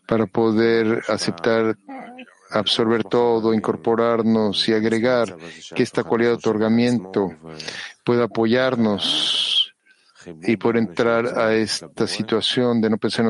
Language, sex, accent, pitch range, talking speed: Spanish, male, Mexican, 105-120 Hz, 115 wpm